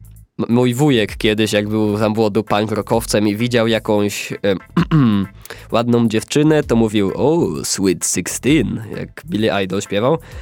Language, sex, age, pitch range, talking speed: Polish, male, 20-39, 105-125 Hz, 155 wpm